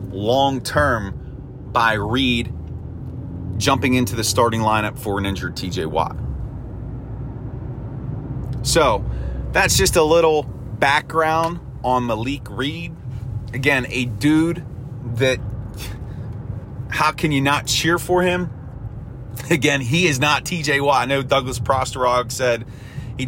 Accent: American